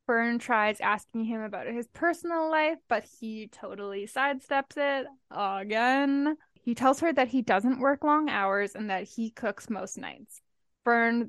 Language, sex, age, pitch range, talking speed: English, female, 10-29, 205-255 Hz, 160 wpm